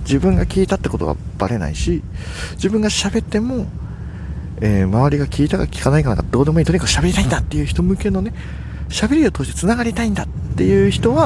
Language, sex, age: Japanese, male, 40-59